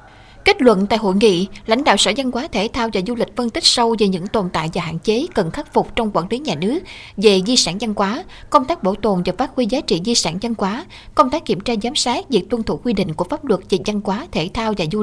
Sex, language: female, Vietnamese